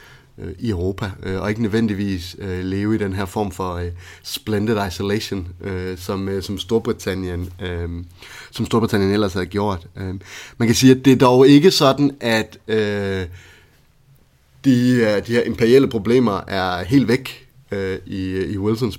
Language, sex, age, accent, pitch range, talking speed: Danish, male, 30-49, native, 90-110 Hz, 160 wpm